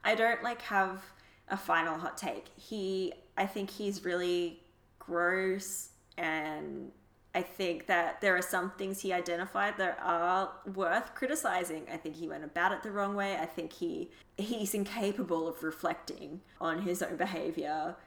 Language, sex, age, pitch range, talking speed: English, female, 20-39, 170-205 Hz, 160 wpm